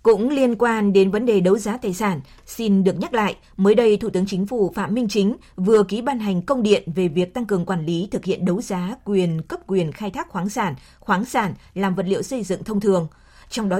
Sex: female